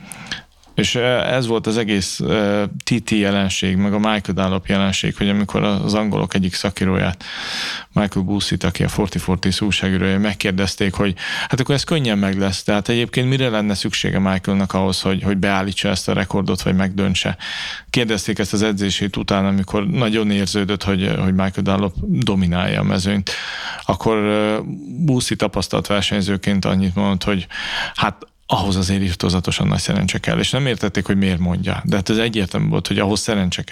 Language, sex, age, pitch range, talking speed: Hungarian, male, 30-49, 95-110 Hz, 165 wpm